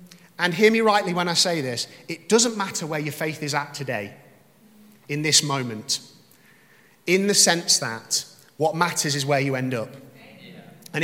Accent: British